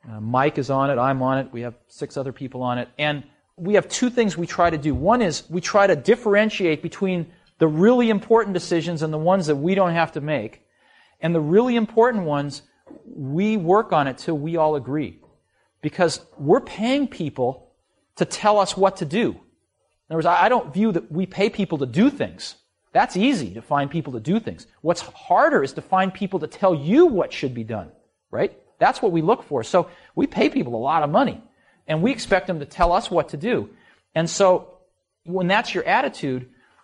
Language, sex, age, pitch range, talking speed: Persian, male, 40-59, 135-190 Hz, 215 wpm